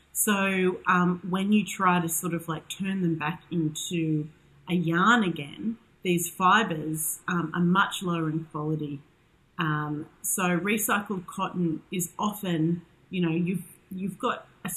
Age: 30-49